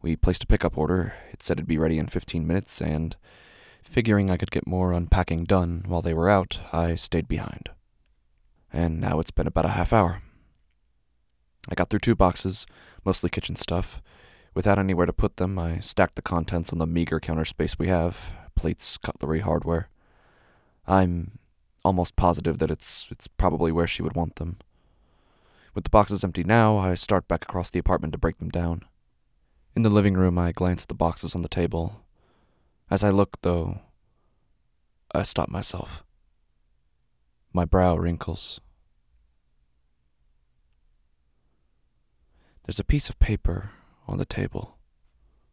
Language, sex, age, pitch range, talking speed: English, male, 20-39, 75-95 Hz, 160 wpm